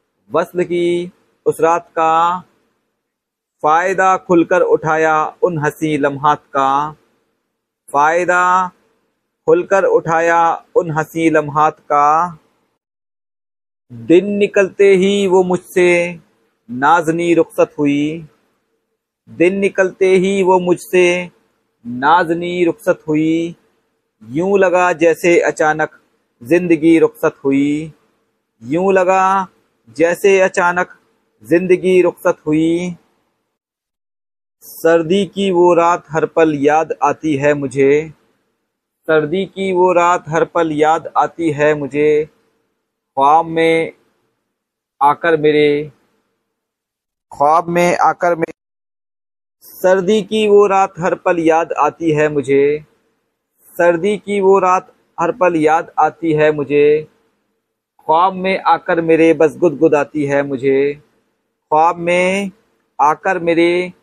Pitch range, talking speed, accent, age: 150-180 Hz, 100 wpm, native, 50-69